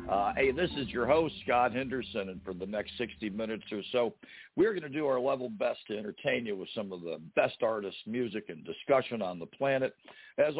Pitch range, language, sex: 100-130 Hz, English, male